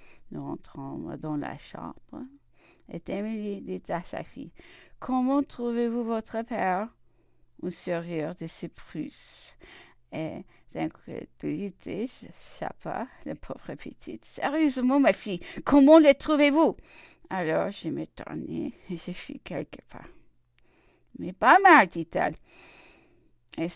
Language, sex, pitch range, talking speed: English, female, 150-215 Hz, 130 wpm